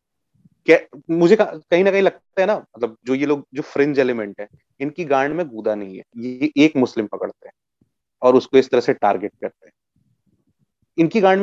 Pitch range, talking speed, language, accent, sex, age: 125-170 Hz, 200 wpm, Hindi, native, male, 30-49